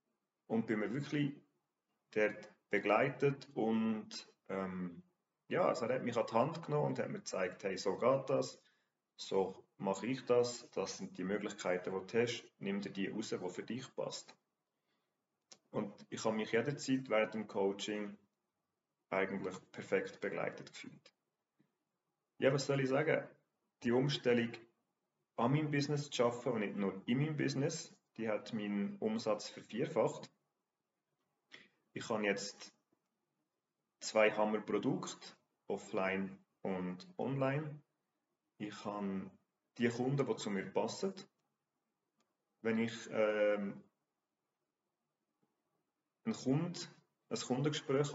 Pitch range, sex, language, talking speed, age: 100-140 Hz, male, German, 125 wpm, 40-59